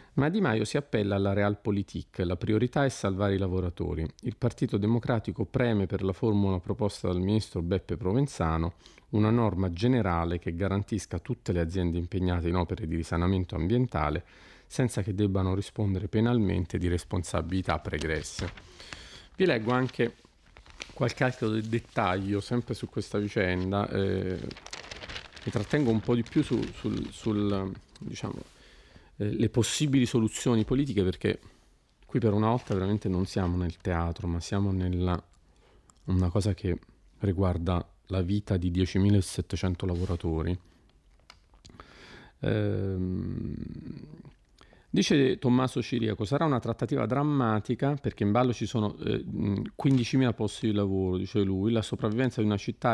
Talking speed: 135 wpm